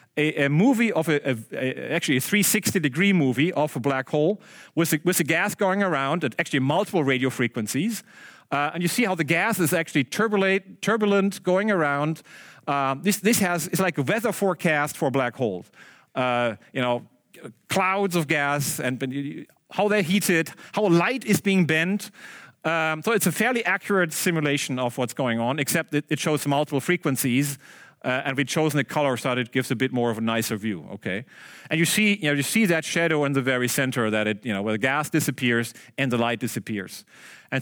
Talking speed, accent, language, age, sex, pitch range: 205 wpm, German, Dutch, 40-59, male, 130-180 Hz